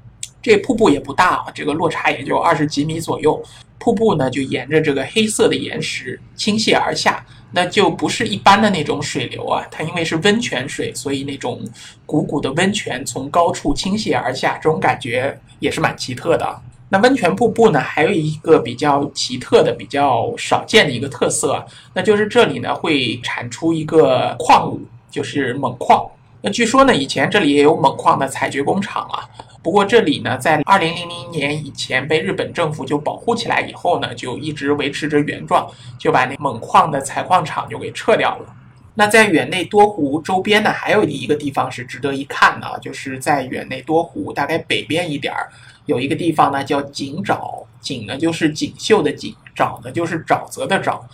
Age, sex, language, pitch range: 50-69, male, Chinese, 135-180 Hz